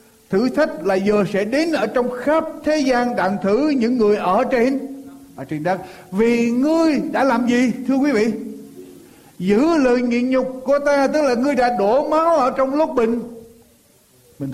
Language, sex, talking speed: Vietnamese, male, 185 wpm